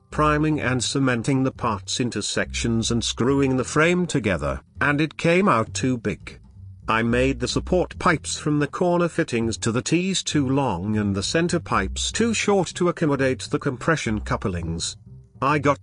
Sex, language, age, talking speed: male, English, 50-69, 170 wpm